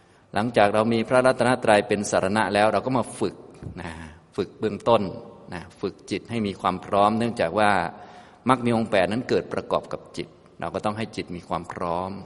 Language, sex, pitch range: Thai, male, 90-110 Hz